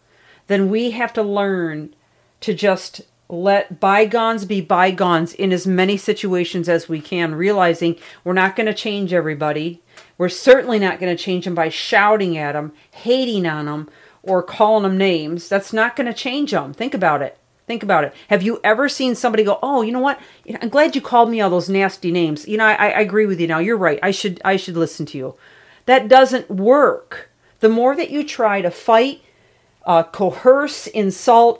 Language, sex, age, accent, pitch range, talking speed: English, female, 40-59, American, 175-225 Hz, 200 wpm